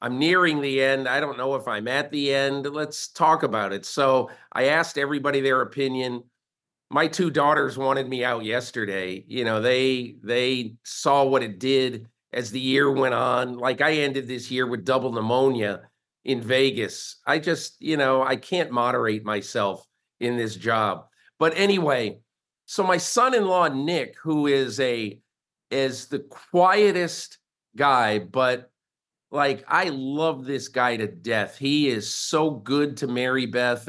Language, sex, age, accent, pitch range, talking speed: English, male, 50-69, American, 125-155 Hz, 160 wpm